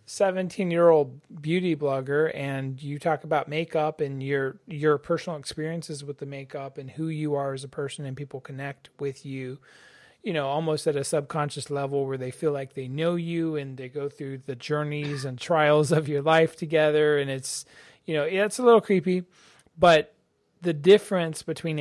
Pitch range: 135-165 Hz